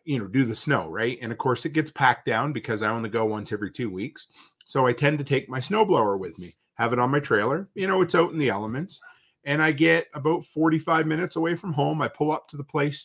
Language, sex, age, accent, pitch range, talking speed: English, male, 40-59, American, 125-165 Hz, 260 wpm